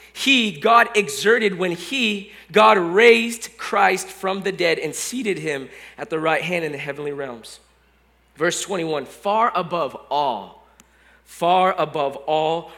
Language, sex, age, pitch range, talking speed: English, male, 20-39, 145-205 Hz, 140 wpm